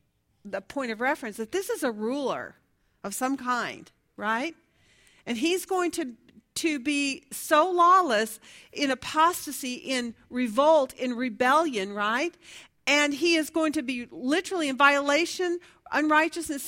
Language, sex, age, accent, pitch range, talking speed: English, female, 50-69, American, 230-310 Hz, 135 wpm